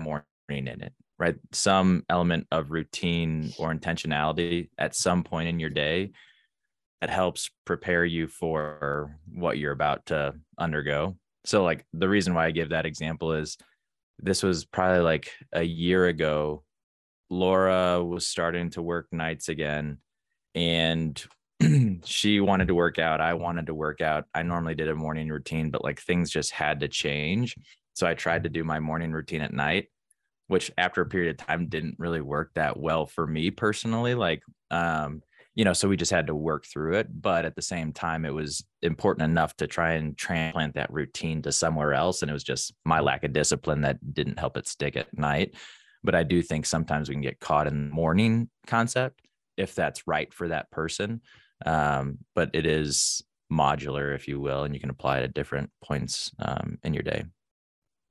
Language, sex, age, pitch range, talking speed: English, male, 20-39, 75-85 Hz, 190 wpm